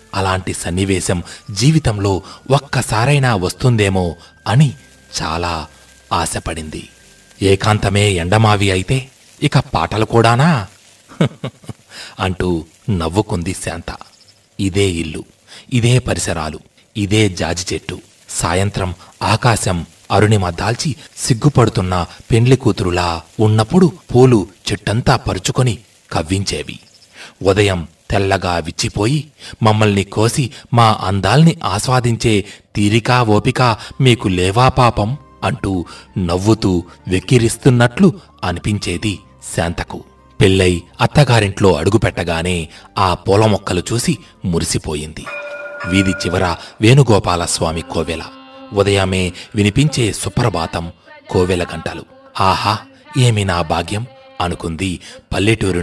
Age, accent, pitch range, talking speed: 30-49, native, 90-120 Hz, 80 wpm